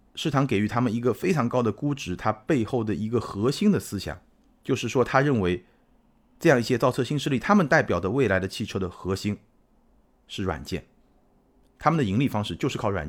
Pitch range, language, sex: 90-135 Hz, Chinese, male